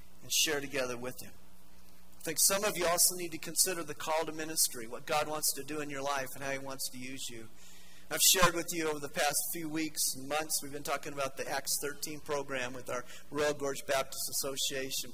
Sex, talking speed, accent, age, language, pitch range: male, 225 wpm, American, 40-59, English, 125-180 Hz